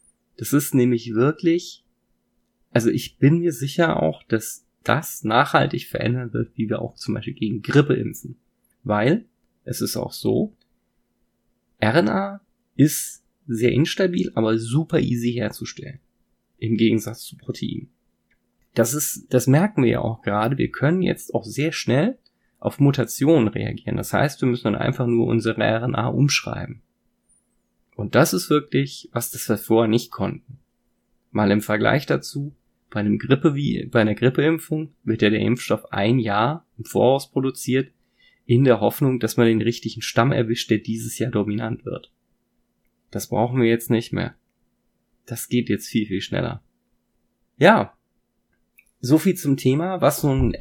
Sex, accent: male, German